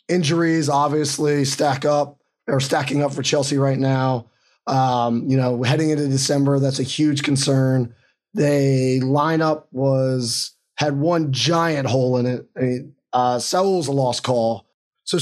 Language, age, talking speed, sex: English, 20-39, 140 wpm, male